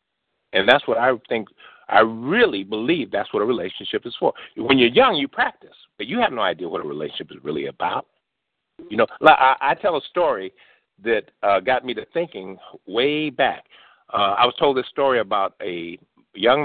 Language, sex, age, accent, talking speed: English, male, 50-69, American, 195 wpm